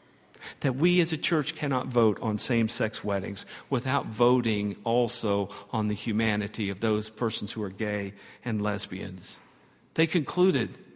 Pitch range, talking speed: 115-165 Hz, 140 wpm